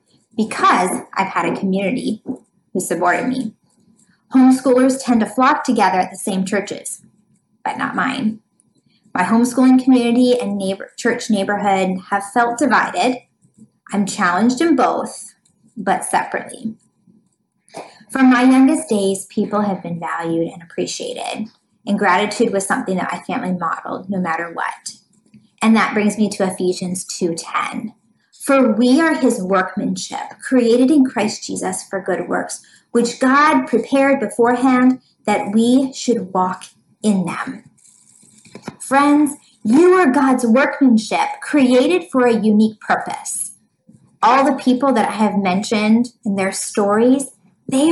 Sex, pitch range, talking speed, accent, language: female, 200-260 Hz, 135 wpm, American, English